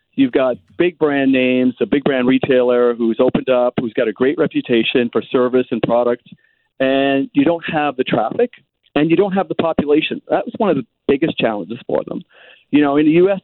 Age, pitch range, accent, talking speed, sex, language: 50-69, 125-155 Hz, American, 210 wpm, male, English